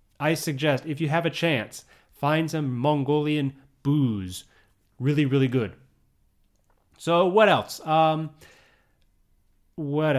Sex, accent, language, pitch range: male, American, English, 125-170 Hz